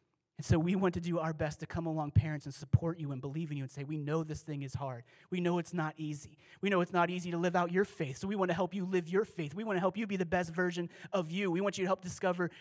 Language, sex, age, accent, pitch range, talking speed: English, male, 30-49, American, 155-195 Hz, 325 wpm